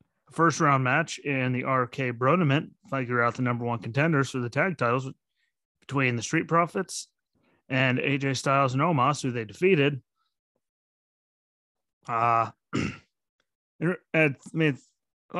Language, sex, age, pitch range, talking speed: English, male, 30-49, 115-140 Hz, 115 wpm